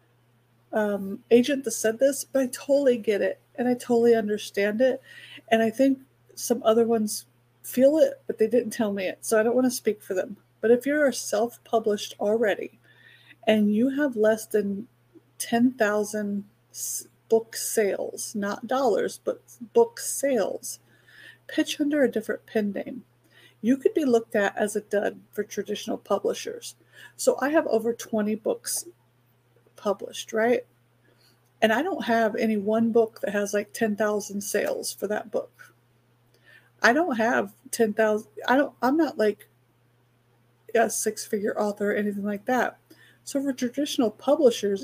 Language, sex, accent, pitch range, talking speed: English, female, American, 205-245 Hz, 155 wpm